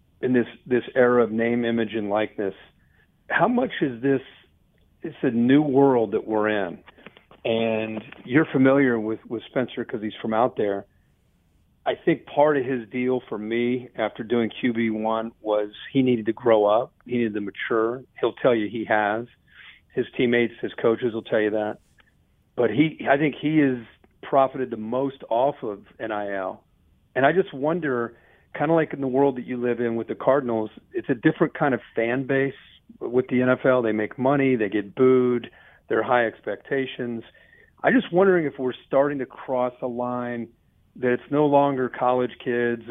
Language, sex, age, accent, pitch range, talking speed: English, male, 50-69, American, 115-135 Hz, 180 wpm